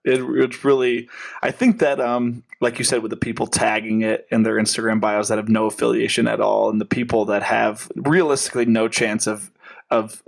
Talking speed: 205 wpm